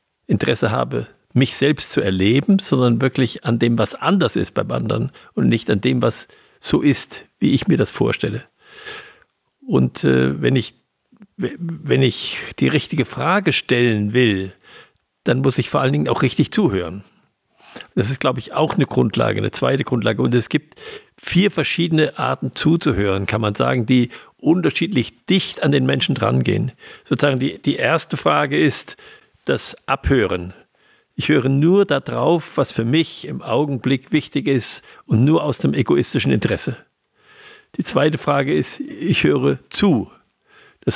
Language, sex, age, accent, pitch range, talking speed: German, male, 50-69, German, 120-155 Hz, 155 wpm